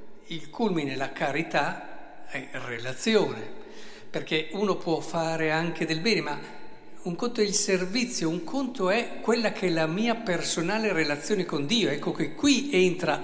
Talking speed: 160 wpm